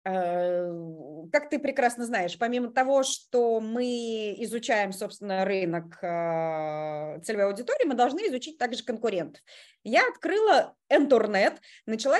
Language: Russian